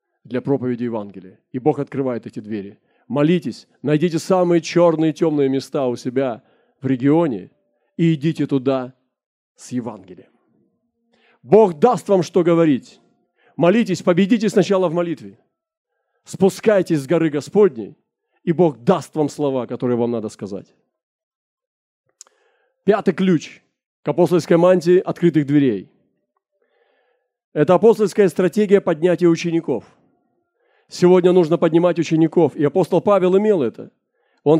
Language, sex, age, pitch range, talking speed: Russian, male, 40-59, 145-195 Hz, 120 wpm